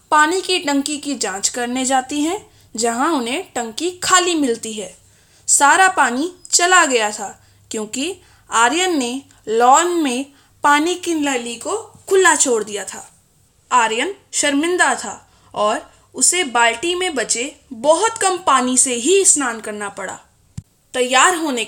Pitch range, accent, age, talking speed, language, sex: 240-345 Hz, native, 20-39, 140 wpm, Hindi, female